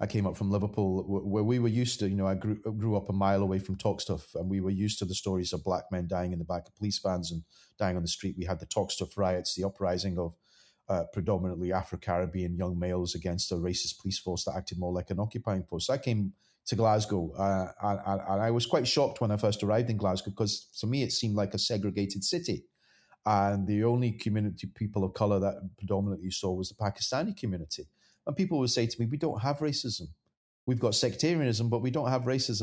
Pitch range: 95-115 Hz